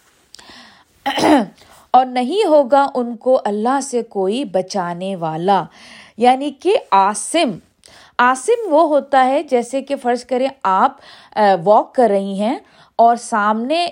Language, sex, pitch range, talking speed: Urdu, female, 205-295 Hz, 120 wpm